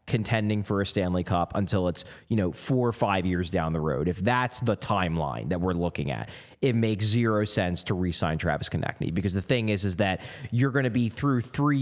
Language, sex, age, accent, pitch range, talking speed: English, male, 20-39, American, 110-170 Hz, 230 wpm